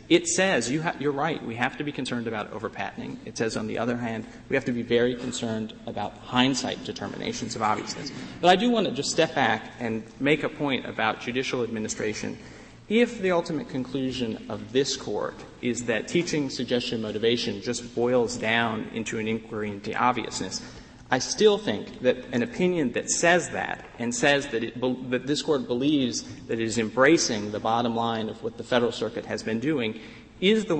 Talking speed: 195 wpm